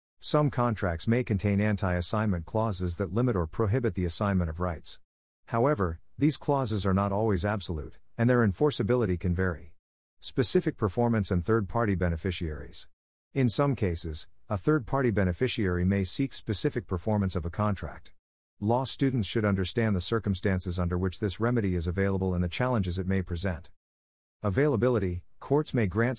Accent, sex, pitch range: American, male, 90-115 Hz